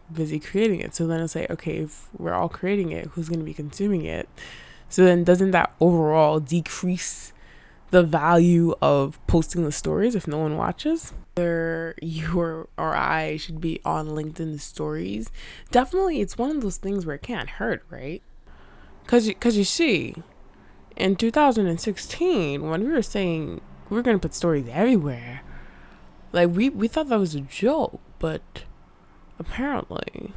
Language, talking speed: English, 160 wpm